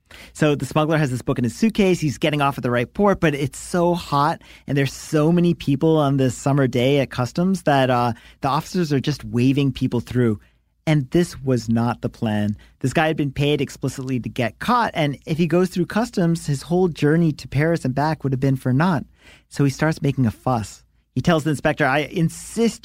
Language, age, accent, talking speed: English, 40-59, American, 225 wpm